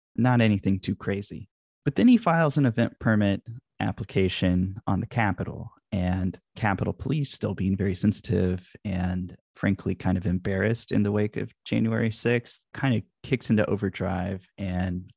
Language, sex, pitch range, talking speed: English, male, 95-120 Hz, 155 wpm